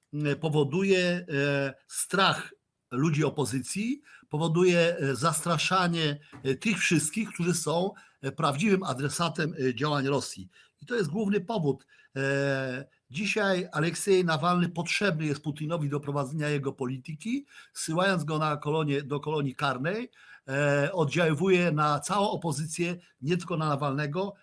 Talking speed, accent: 110 wpm, native